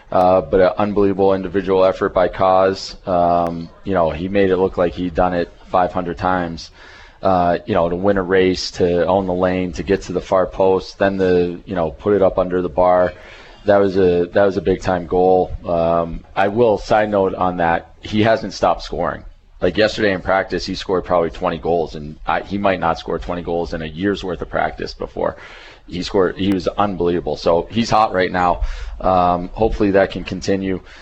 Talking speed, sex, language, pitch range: 210 wpm, male, English, 85-100 Hz